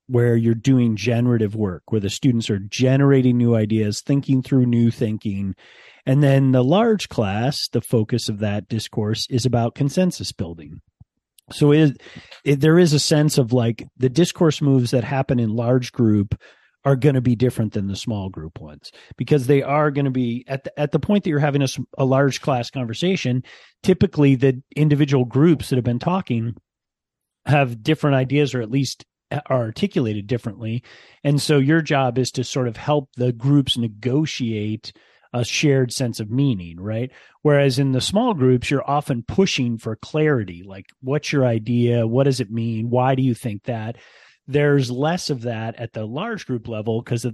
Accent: American